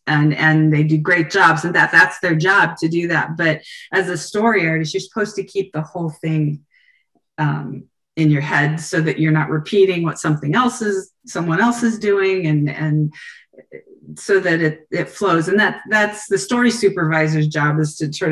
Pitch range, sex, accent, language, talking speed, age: 155-195 Hz, female, American, English, 195 wpm, 40-59